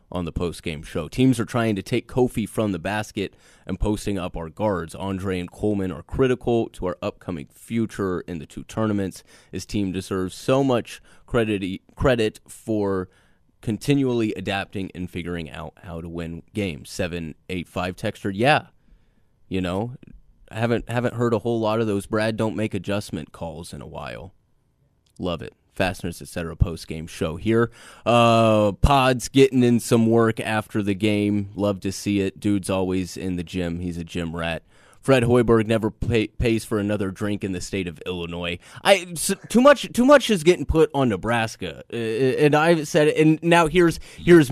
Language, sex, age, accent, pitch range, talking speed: English, male, 20-39, American, 90-125 Hz, 175 wpm